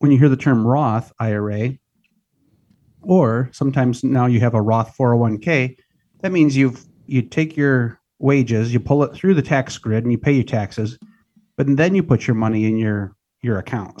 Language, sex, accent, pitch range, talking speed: English, male, American, 115-145 Hz, 190 wpm